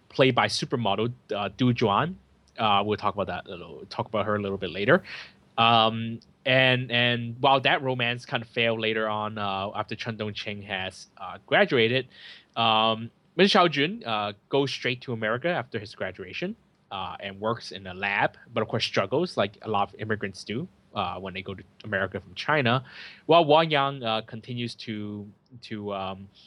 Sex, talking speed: male, 185 wpm